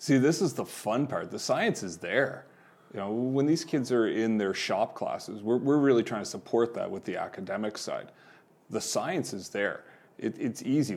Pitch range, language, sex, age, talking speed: 105-125 Hz, English, male, 30-49, 210 wpm